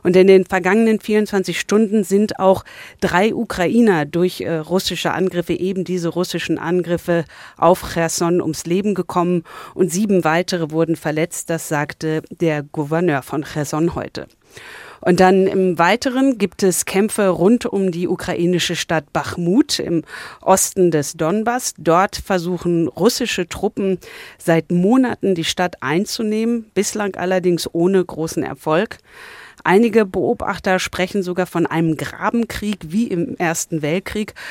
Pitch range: 170-200 Hz